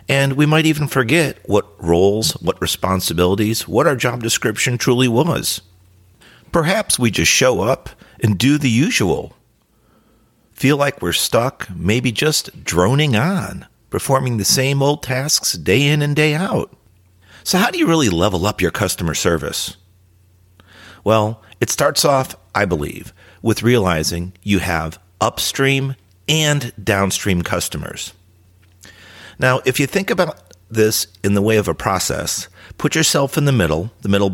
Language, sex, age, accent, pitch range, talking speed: English, male, 50-69, American, 90-130 Hz, 150 wpm